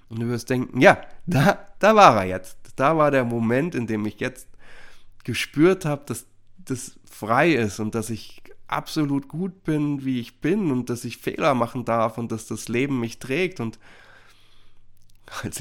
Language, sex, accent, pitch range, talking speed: German, male, German, 105-135 Hz, 180 wpm